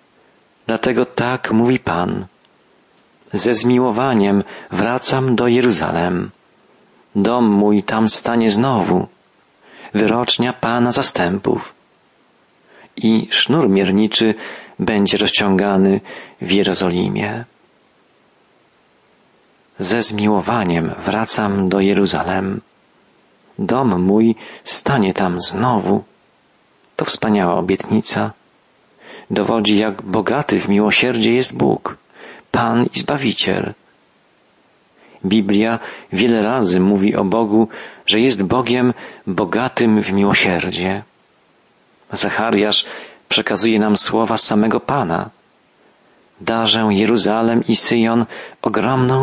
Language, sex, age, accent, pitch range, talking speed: Polish, male, 40-59, native, 100-115 Hz, 85 wpm